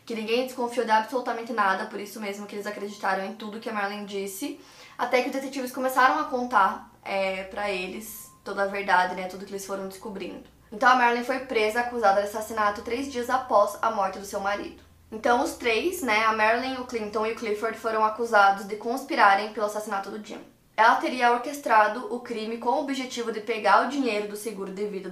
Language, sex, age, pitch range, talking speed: Portuguese, female, 20-39, 205-250 Hz, 210 wpm